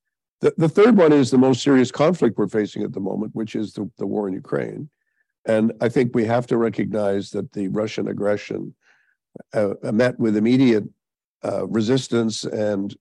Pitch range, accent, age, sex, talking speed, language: 105-130 Hz, American, 50-69, male, 180 wpm, English